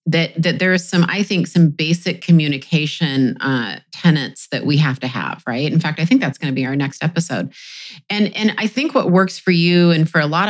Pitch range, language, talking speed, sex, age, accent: 150-175 Hz, English, 230 wpm, female, 30-49, American